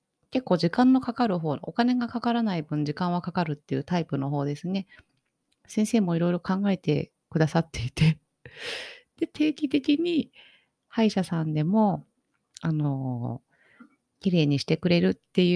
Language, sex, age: Japanese, female, 30-49